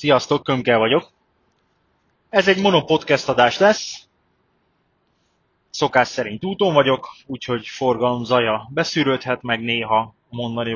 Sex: male